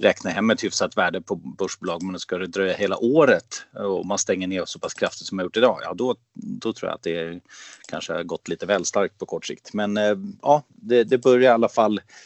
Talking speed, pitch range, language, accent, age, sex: 240 wpm, 85-105 Hz, Swedish, native, 30-49, male